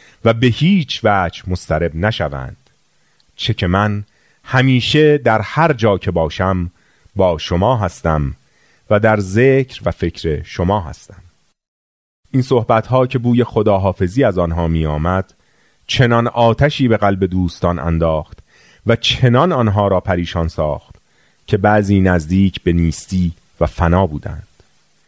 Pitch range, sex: 90-115 Hz, male